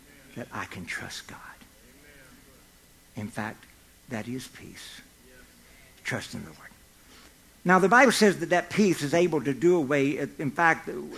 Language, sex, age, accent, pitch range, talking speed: English, male, 60-79, American, 130-165 Hz, 150 wpm